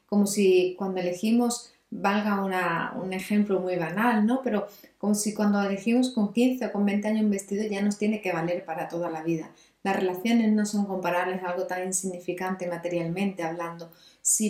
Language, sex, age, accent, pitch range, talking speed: Spanish, female, 30-49, Spanish, 180-210 Hz, 180 wpm